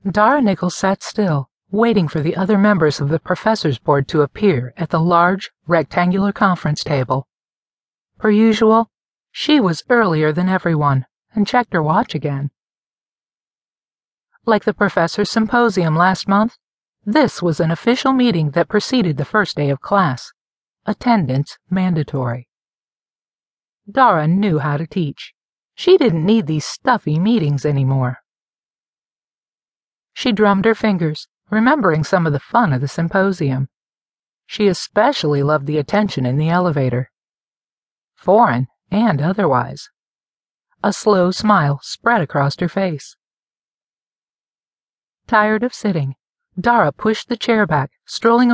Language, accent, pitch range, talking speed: English, American, 150-215 Hz, 130 wpm